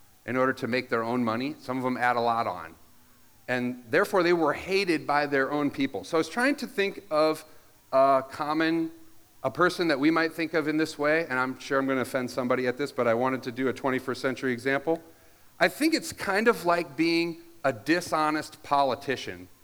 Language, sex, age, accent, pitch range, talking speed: English, male, 40-59, American, 125-160 Hz, 215 wpm